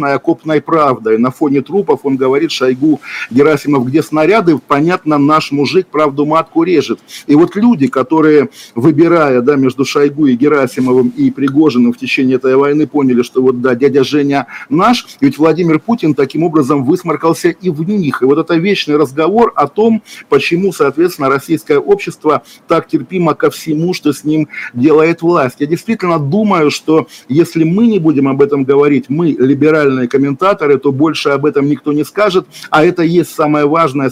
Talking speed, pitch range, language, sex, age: 170 wpm, 135-165 Hz, Russian, male, 50-69